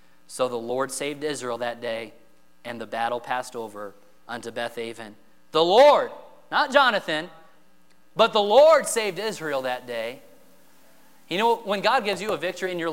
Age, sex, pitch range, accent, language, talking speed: 30-49, male, 160-220 Hz, American, English, 165 wpm